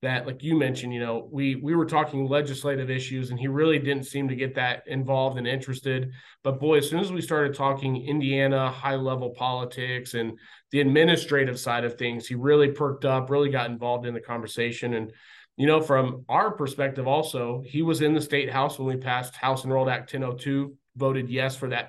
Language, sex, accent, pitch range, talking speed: English, male, American, 125-145 Hz, 205 wpm